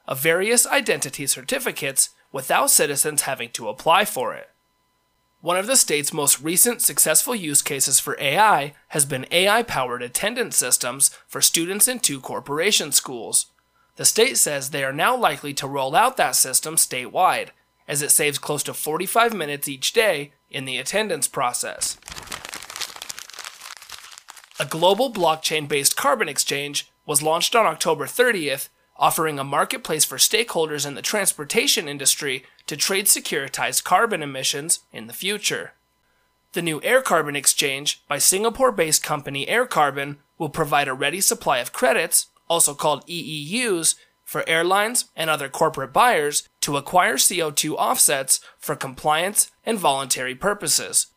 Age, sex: 30-49, male